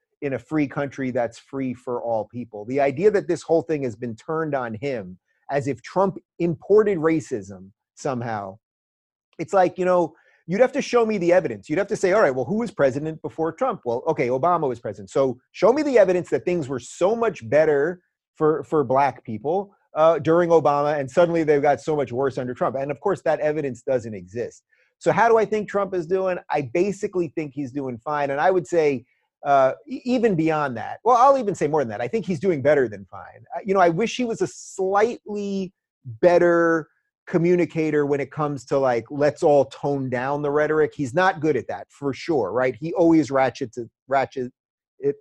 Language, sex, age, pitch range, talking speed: English, male, 30-49, 135-180 Hz, 210 wpm